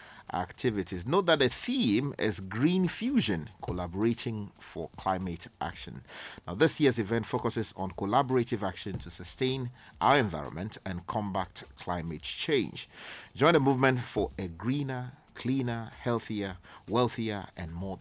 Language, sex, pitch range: English, male, 90-120 Hz